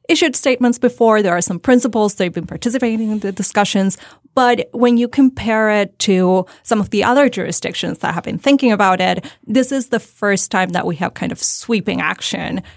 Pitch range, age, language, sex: 185-240 Hz, 20-39, English, female